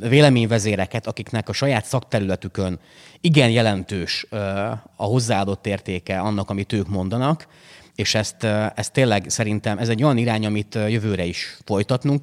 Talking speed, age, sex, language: 130 wpm, 30-49, male, Hungarian